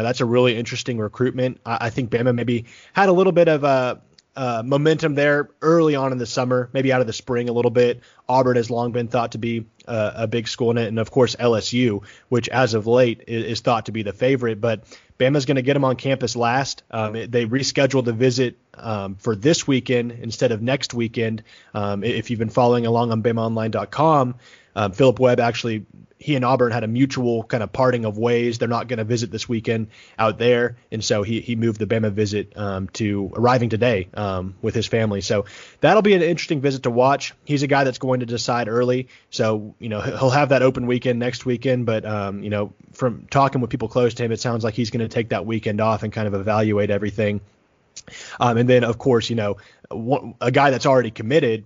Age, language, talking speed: 30-49, English, 225 wpm